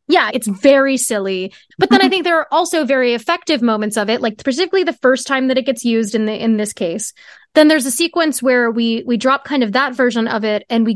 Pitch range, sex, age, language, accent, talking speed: 220-270 Hz, female, 20-39, English, American, 250 wpm